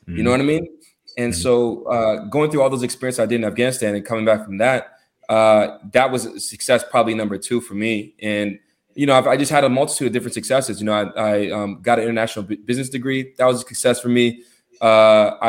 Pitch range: 105-125 Hz